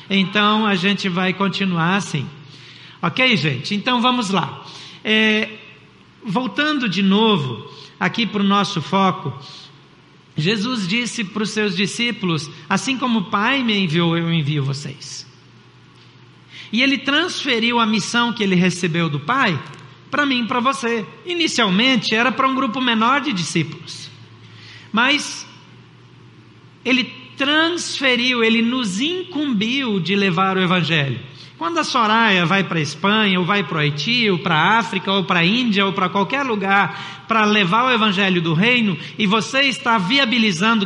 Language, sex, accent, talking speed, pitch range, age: Portuguese, male, Brazilian, 150 wpm, 185-230 Hz, 60-79